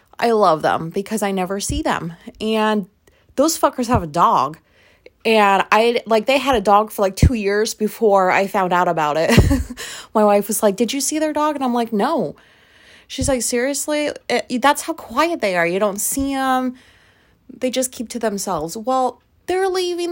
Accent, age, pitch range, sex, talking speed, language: American, 20-39, 200-260 Hz, female, 190 wpm, English